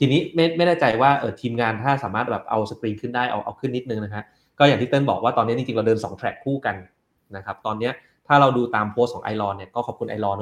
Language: Thai